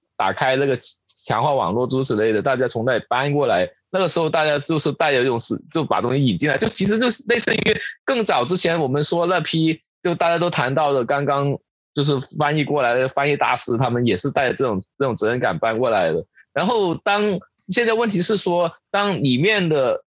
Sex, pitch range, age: male, 145-200 Hz, 20-39